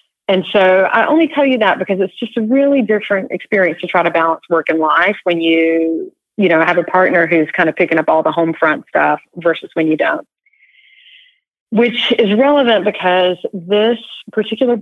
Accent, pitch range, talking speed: American, 170-220 Hz, 195 wpm